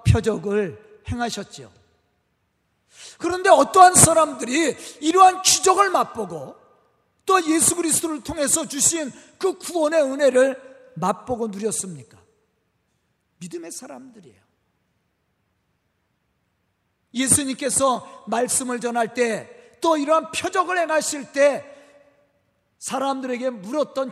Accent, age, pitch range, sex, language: native, 40-59, 215-310 Hz, male, Korean